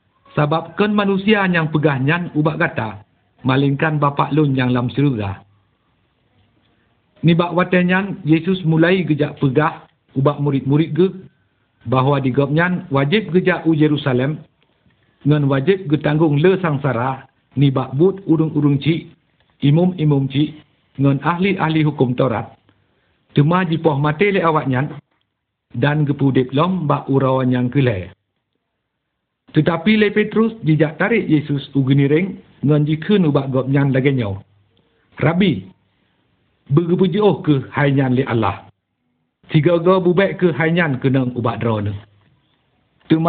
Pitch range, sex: 130-170 Hz, male